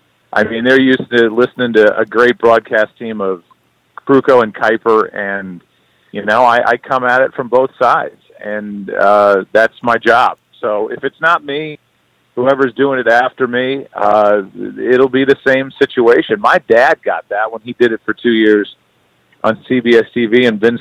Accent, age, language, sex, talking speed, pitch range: American, 40-59, English, male, 180 wpm, 110-135 Hz